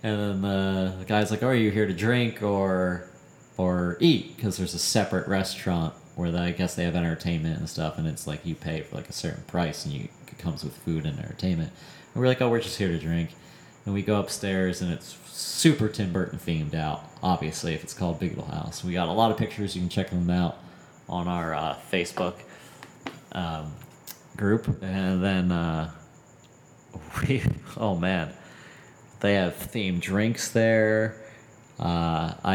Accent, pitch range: American, 85-110 Hz